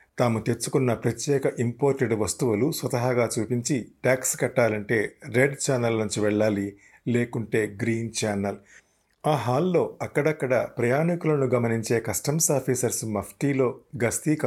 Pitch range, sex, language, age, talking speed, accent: 105-130 Hz, male, Telugu, 50-69, 105 wpm, native